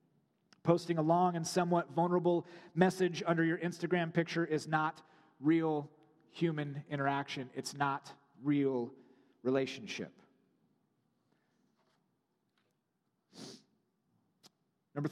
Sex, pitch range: male, 150-170 Hz